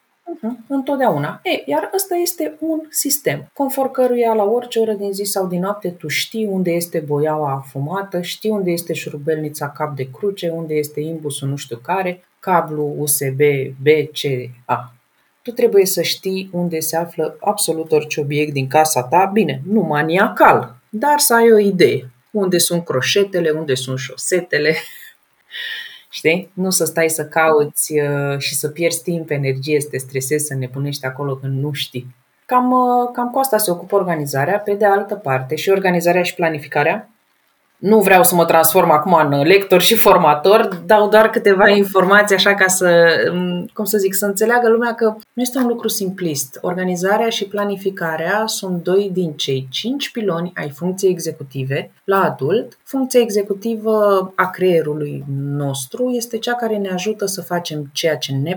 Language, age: Romanian, 30-49